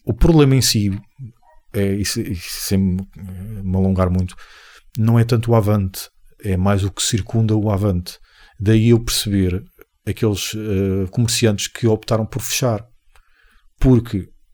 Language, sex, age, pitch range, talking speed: Portuguese, male, 40-59, 100-135 Hz, 135 wpm